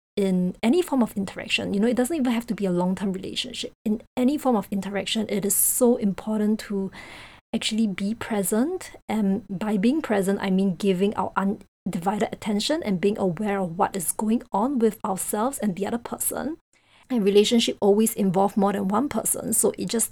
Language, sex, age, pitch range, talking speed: English, female, 20-39, 200-235 Hz, 190 wpm